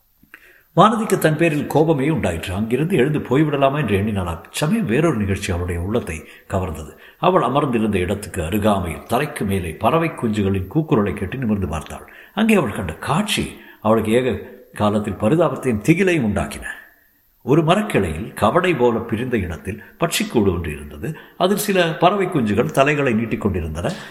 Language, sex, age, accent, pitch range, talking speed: Tamil, male, 60-79, native, 100-150 Hz, 125 wpm